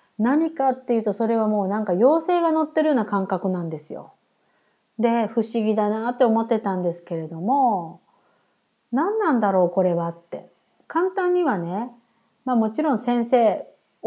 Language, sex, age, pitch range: Japanese, female, 30-49, 200-320 Hz